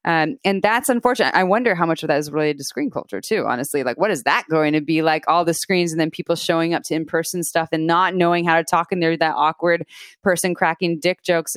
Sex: female